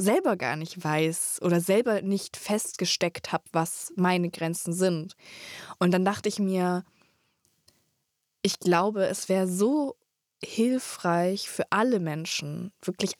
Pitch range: 170-200 Hz